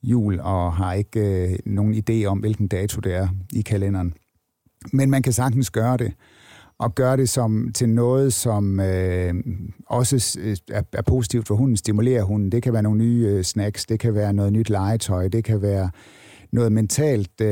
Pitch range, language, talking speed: 105-130 Hz, Danish, 170 wpm